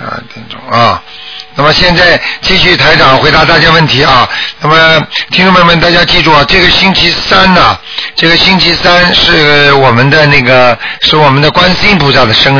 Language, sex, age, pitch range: Chinese, male, 50-69, 135-170 Hz